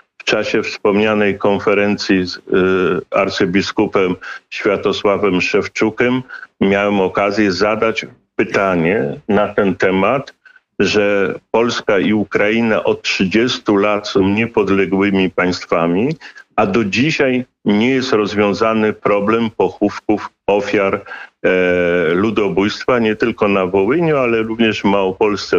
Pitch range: 100-115 Hz